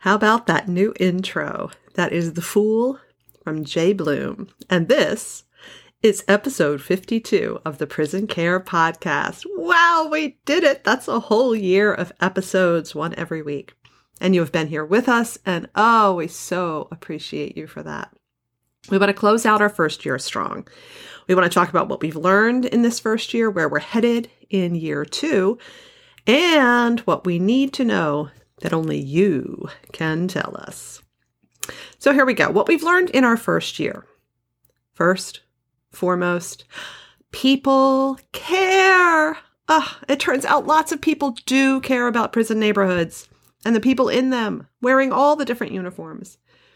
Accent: American